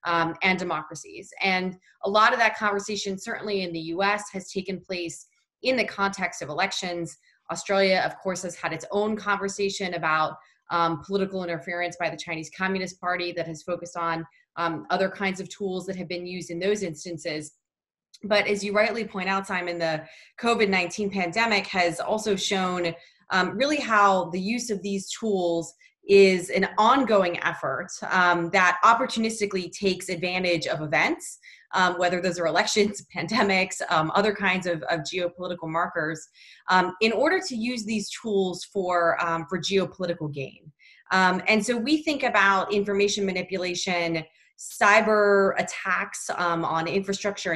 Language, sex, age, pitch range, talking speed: English, female, 20-39, 170-200 Hz, 155 wpm